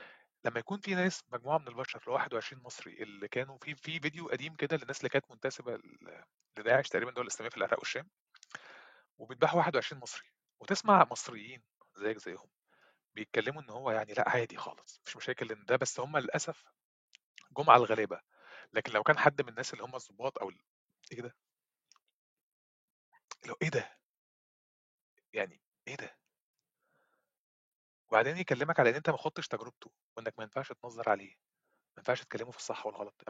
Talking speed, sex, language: 160 wpm, male, Arabic